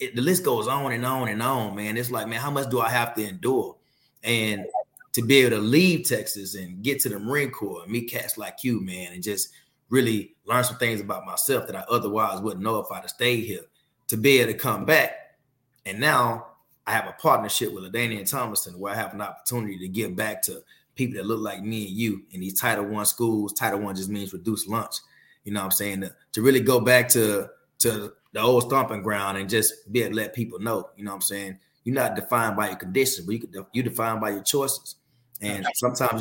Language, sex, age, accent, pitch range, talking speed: English, male, 30-49, American, 105-125 Hz, 235 wpm